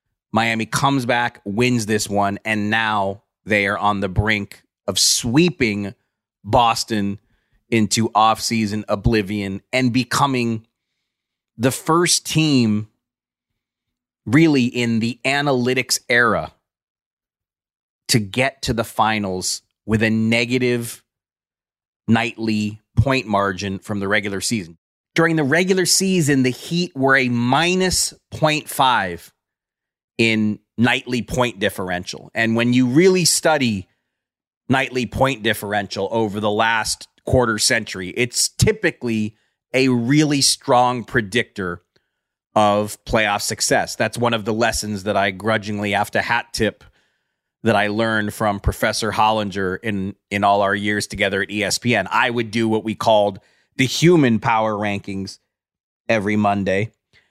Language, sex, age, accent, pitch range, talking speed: English, male, 30-49, American, 105-125 Hz, 125 wpm